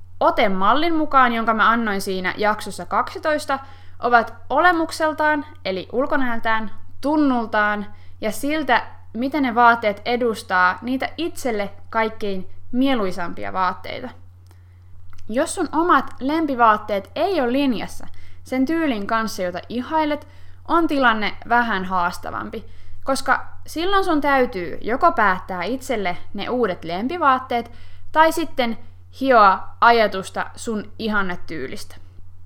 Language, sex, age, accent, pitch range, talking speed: Finnish, female, 20-39, native, 190-290 Hz, 105 wpm